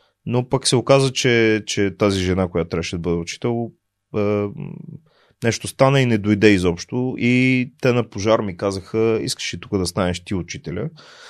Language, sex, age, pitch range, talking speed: Bulgarian, male, 20-39, 100-135 Hz, 175 wpm